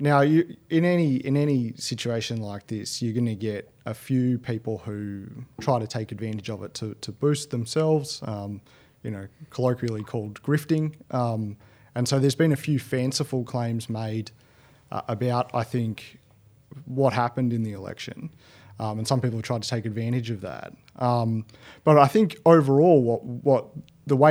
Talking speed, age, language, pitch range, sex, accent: 180 wpm, 30-49, English, 115-140 Hz, male, Australian